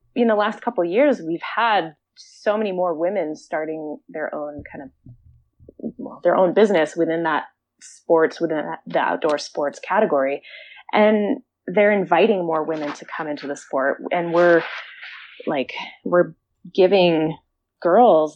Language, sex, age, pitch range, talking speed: English, female, 20-39, 155-215 Hz, 145 wpm